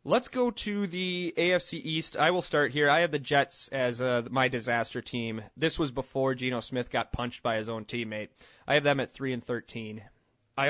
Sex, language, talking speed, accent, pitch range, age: male, English, 215 wpm, American, 115-145 Hz, 20-39